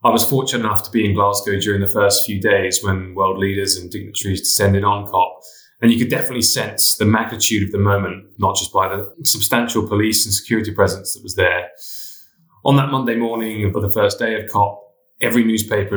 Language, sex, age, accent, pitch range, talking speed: English, male, 20-39, British, 100-120 Hz, 205 wpm